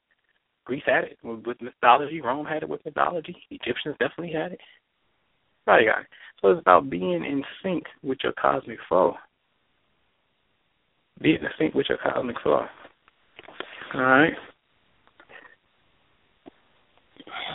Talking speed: 120 wpm